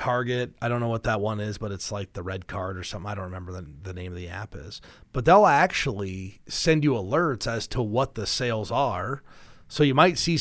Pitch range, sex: 100-140 Hz, male